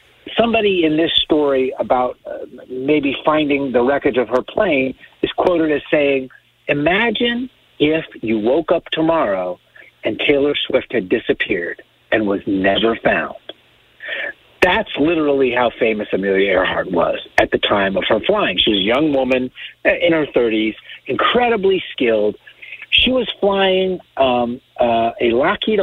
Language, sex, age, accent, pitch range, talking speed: English, male, 50-69, American, 125-185 Hz, 145 wpm